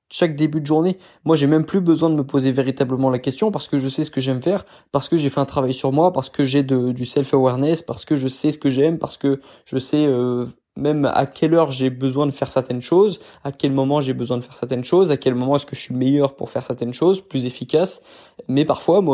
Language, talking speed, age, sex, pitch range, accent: French, 265 wpm, 20-39, male, 130-160 Hz, French